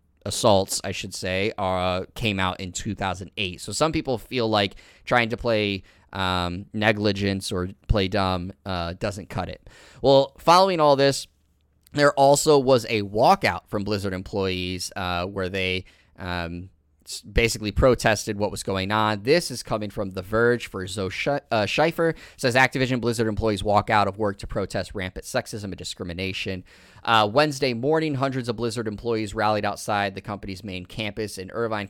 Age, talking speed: 20-39, 165 wpm